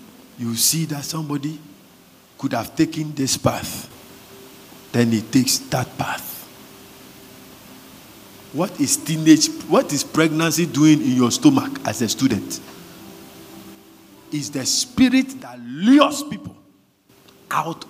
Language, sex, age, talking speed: English, male, 50-69, 115 wpm